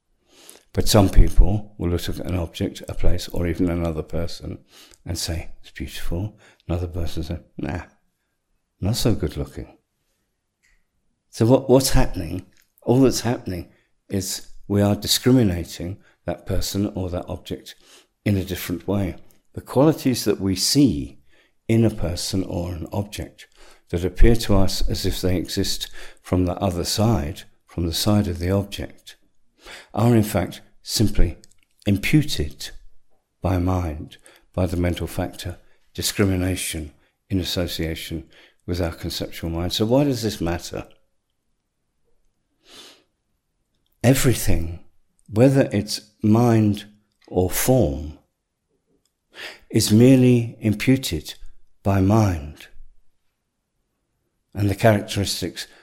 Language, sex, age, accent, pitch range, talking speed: English, male, 60-79, British, 85-105 Hz, 120 wpm